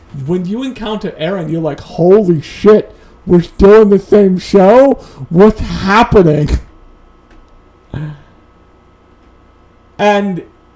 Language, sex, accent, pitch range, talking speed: English, male, American, 135-185 Hz, 95 wpm